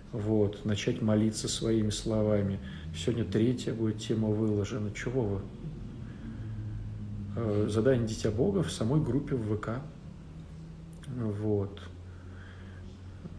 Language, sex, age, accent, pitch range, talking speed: Russian, male, 40-59, native, 105-130 Hz, 95 wpm